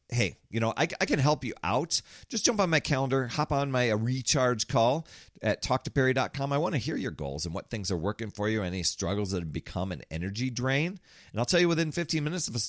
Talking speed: 240 wpm